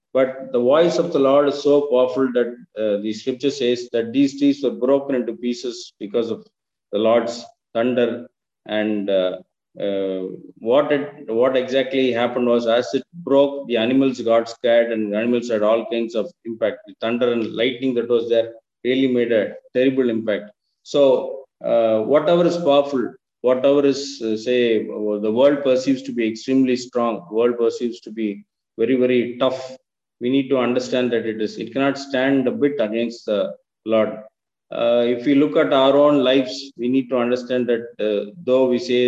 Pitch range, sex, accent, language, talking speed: 110-135 Hz, male, Indian, English, 180 wpm